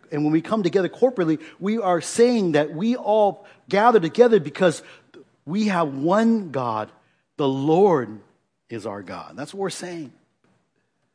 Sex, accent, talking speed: male, American, 150 wpm